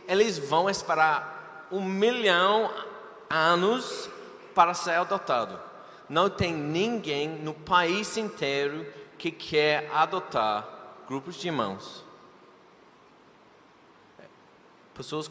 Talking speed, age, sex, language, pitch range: 90 wpm, 30-49, male, Portuguese, 125-175 Hz